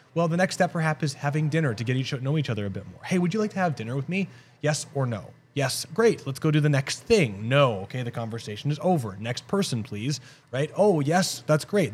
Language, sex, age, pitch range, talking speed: English, male, 30-49, 125-160 Hz, 255 wpm